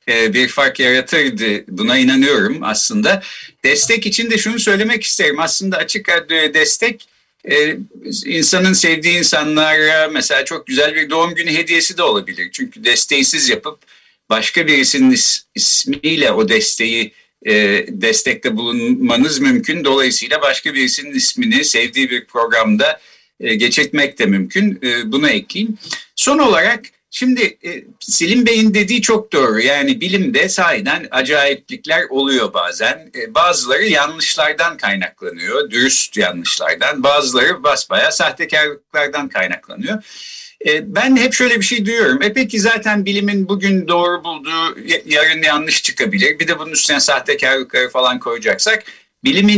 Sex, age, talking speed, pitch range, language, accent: male, 60-79, 115 wpm, 150-235 Hz, Turkish, native